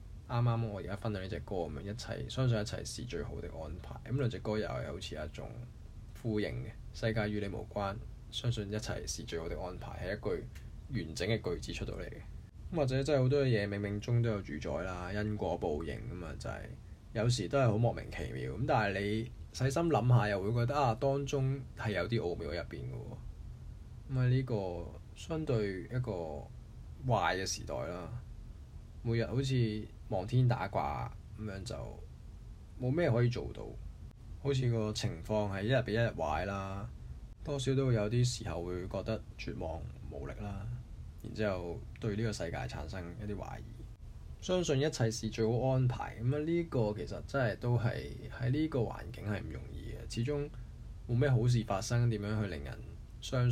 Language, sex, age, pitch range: Chinese, male, 20-39, 95-120 Hz